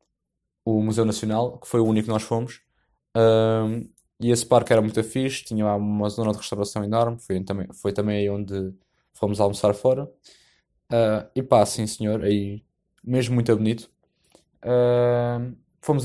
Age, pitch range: 20-39, 105-125 Hz